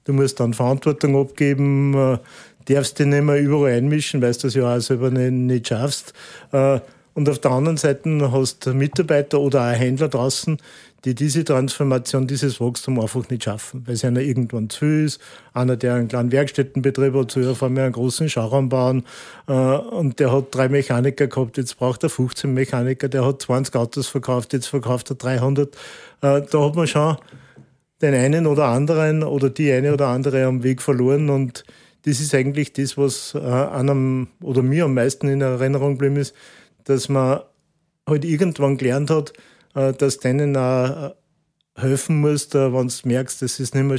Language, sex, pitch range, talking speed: German, male, 130-145 Hz, 185 wpm